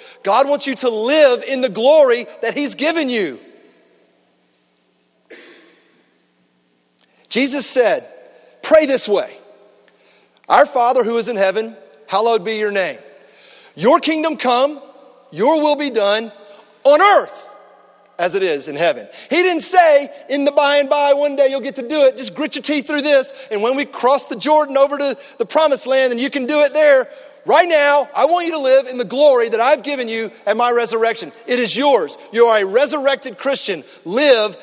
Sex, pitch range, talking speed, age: male, 215-280 Hz, 180 wpm, 40-59